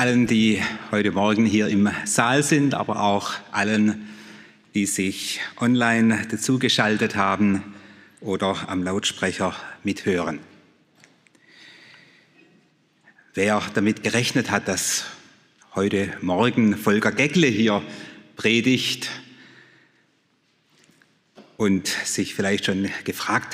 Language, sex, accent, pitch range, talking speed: German, male, German, 105-155 Hz, 90 wpm